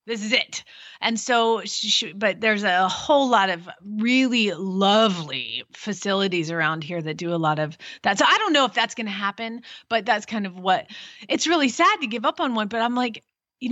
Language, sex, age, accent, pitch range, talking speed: English, female, 30-49, American, 205-285 Hz, 210 wpm